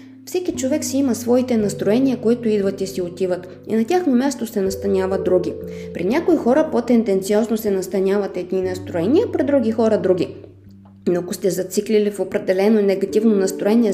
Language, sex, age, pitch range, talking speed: Bulgarian, female, 20-39, 185-225 Hz, 165 wpm